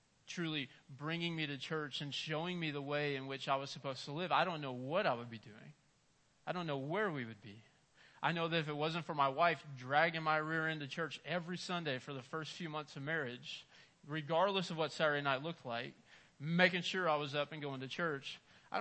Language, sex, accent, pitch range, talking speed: English, male, American, 160-235 Hz, 235 wpm